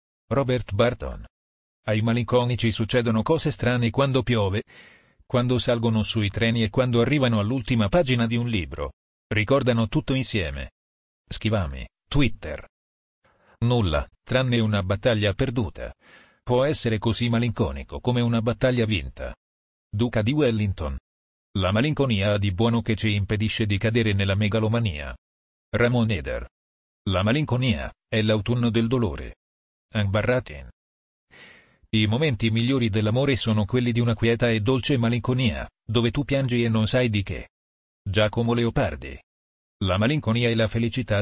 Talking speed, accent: 130 wpm, native